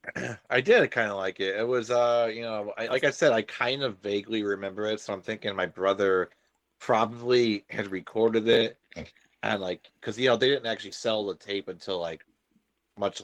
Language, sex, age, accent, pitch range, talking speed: English, male, 30-49, American, 95-110 Hz, 200 wpm